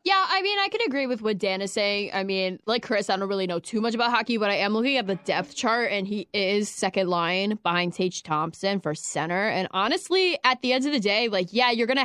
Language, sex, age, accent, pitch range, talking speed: English, female, 10-29, American, 190-235 Hz, 265 wpm